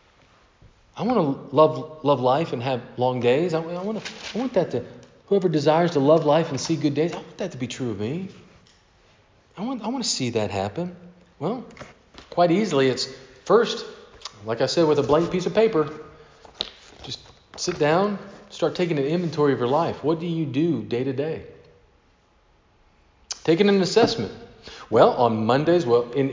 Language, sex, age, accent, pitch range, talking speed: English, male, 40-59, American, 115-170 Hz, 185 wpm